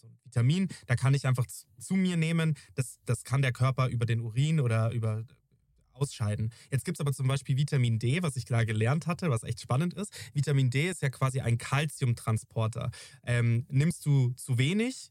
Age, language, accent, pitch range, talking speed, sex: 20-39, German, German, 125-150 Hz, 195 wpm, male